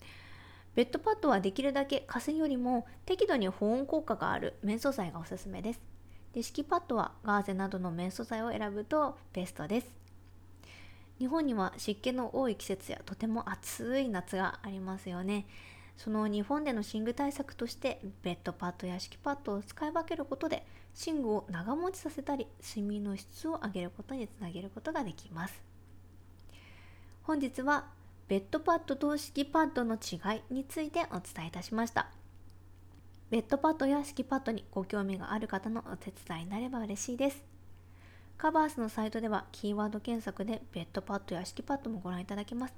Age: 20-39